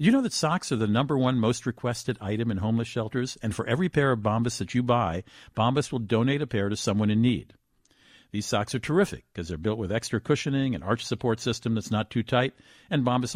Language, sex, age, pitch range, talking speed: English, male, 50-69, 105-145 Hz, 235 wpm